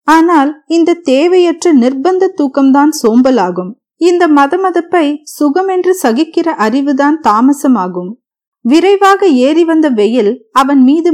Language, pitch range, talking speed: Tamil, 240-325 Hz, 95 wpm